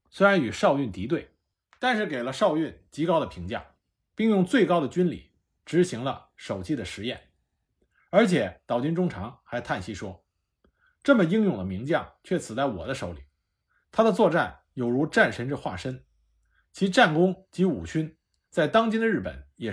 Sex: male